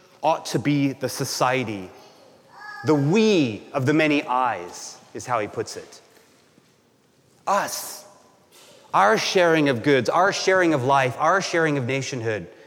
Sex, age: male, 30-49